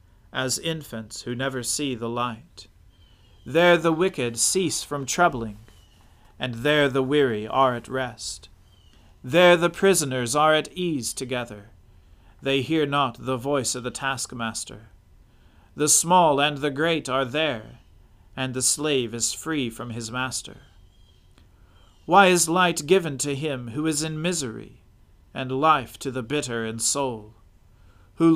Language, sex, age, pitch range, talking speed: English, male, 40-59, 105-150 Hz, 145 wpm